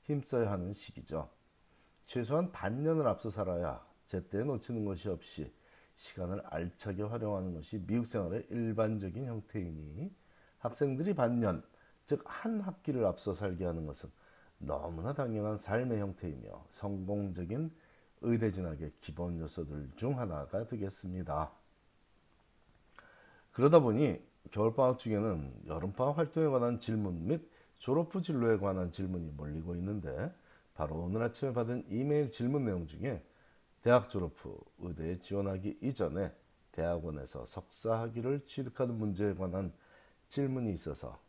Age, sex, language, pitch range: 40-59, male, Korean, 90-125 Hz